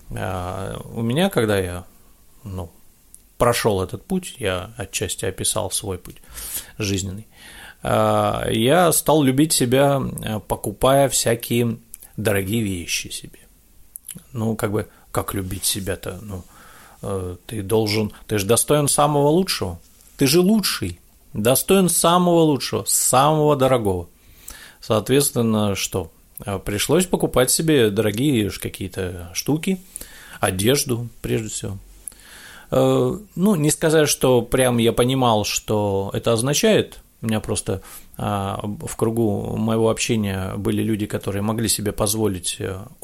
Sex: male